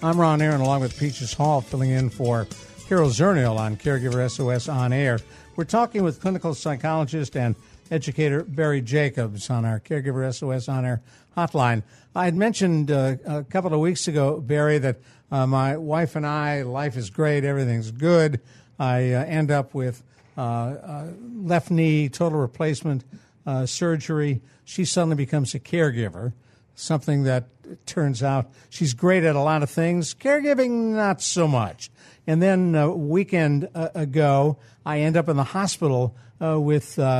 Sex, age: male, 60-79